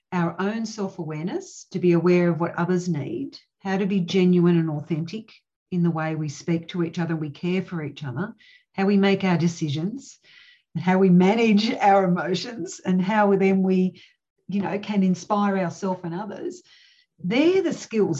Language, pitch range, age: English, 170-205 Hz, 50-69